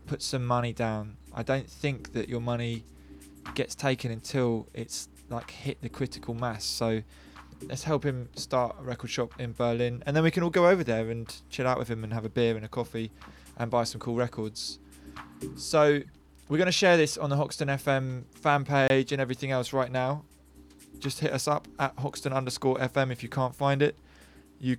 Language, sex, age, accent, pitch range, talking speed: English, male, 20-39, British, 115-135 Hz, 205 wpm